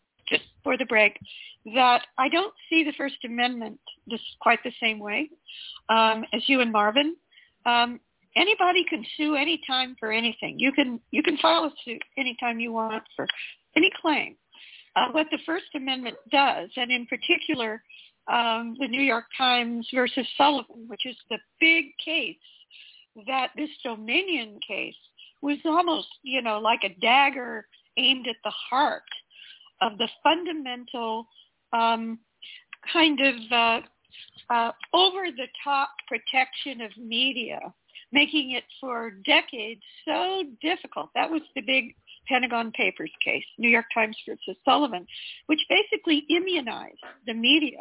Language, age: English, 50-69